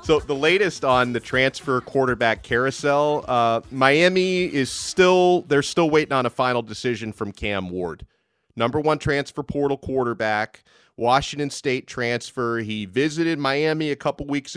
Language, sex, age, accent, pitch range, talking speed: English, male, 30-49, American, 120-145 Hz, 150 wpm